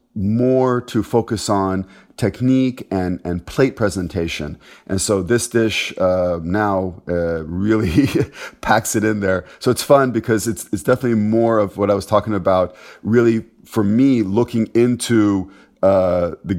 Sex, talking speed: male, 150 wpm